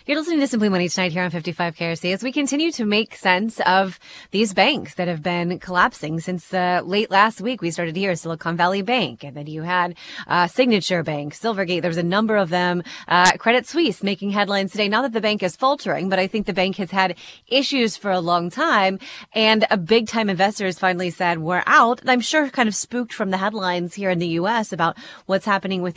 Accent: American